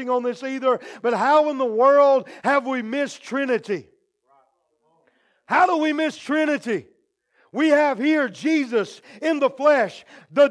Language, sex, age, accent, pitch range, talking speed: English, male, 50-69, American, 210-305 Hz, 145 wpm